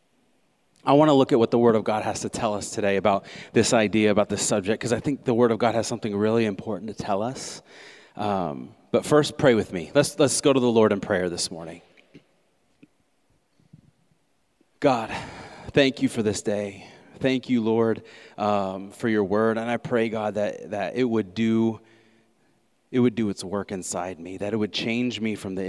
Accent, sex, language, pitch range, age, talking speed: American, male, English, 100-125 Hz, 30-49, 205 wpm